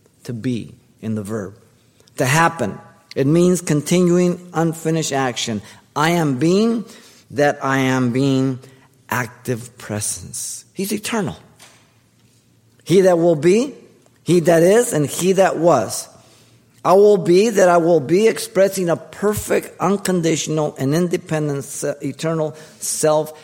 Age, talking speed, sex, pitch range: 50-69, 125 wpm, male, 115-155 Hz